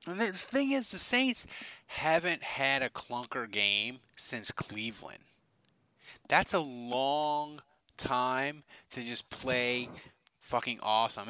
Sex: male